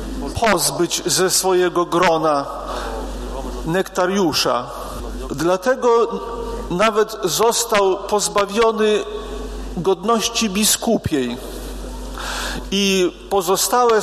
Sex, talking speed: male, 55 wpm